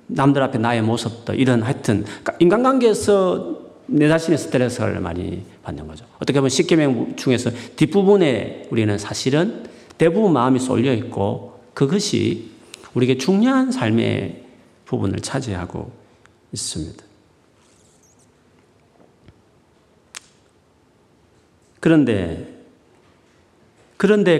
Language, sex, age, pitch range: Korean, male, 40-59, 115-190 Hz